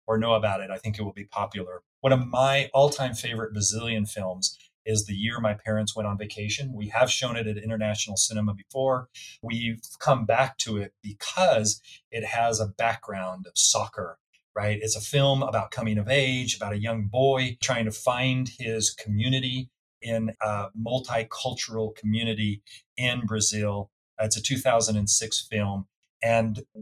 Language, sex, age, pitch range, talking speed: English, male, 30-49, 105-115 Hz, 165 wpm